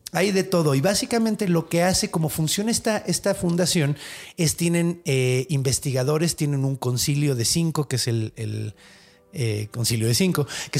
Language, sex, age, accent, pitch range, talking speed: Spanish, male, 30-49, Mexican, 135-175 Hz, 170 wpm